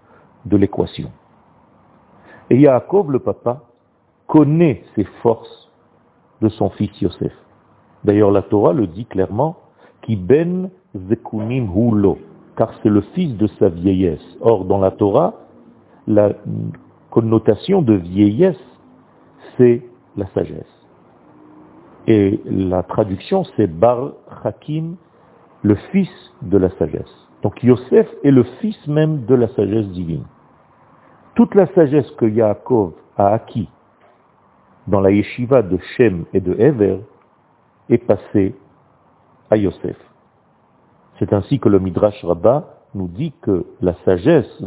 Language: French